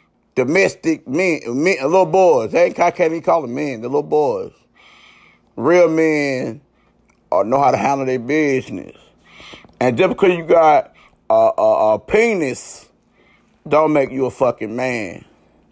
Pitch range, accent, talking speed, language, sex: 125-170 Hz, American, 145 wpm, English, male